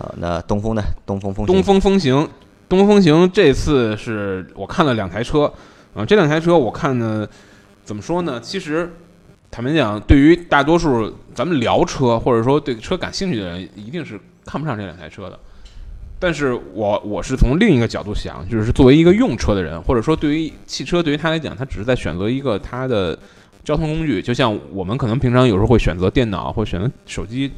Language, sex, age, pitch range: Chinese, male, 20-39, 100-150 Hz